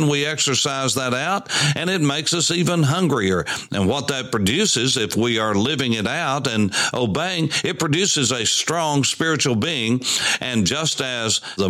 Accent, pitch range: American, 110-140 Hz